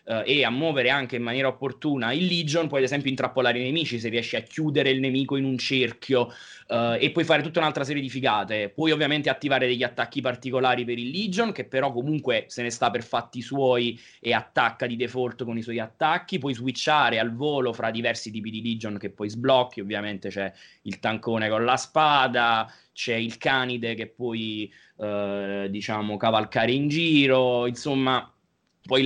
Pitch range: 110-135 Hz